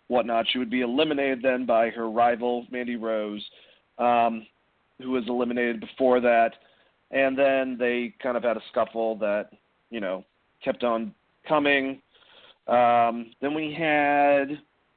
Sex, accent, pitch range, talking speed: male, American, 120-150 Hz, 140 wpm